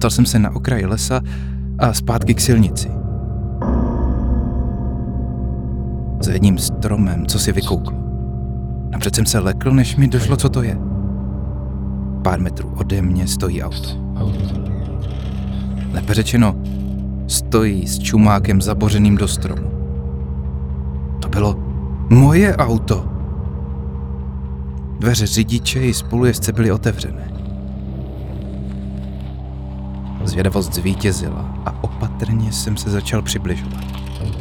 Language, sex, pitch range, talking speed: Czech, male, 65-100 Hz, 100 wpm